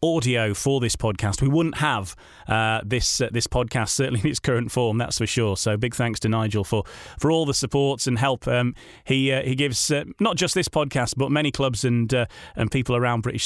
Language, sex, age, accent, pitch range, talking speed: English, male, 30-49, British, 115-145 Hz, 225 wpm